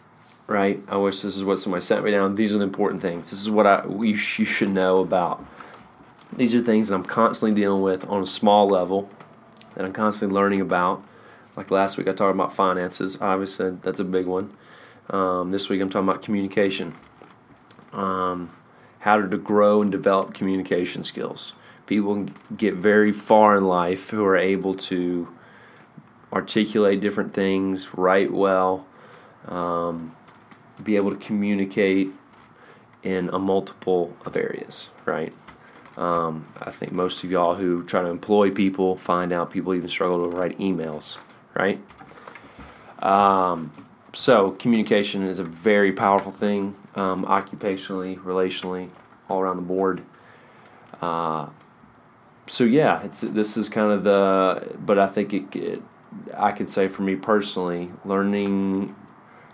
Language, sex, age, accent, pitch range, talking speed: English, male, 30-49, American, 90-100 Hz, 150 wpm